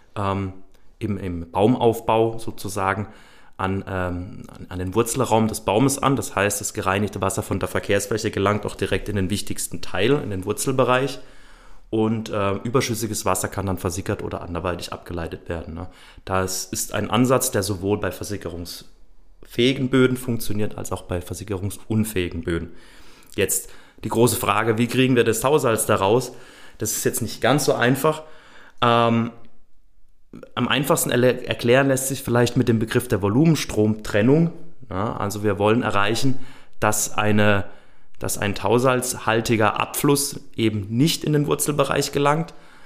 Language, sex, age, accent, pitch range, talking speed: German, male, 30-49, German, 95-125 Hz, 140 wpm